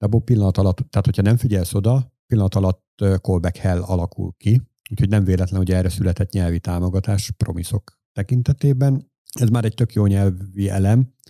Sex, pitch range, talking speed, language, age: male, 95-115 Hz, 150 wpm, Hungarian, 50-69